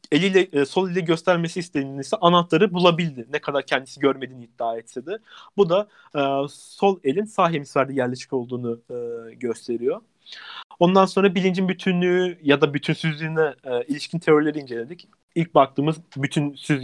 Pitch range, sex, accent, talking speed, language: 130-165 Hz, male, native, 145 wpm, Turkish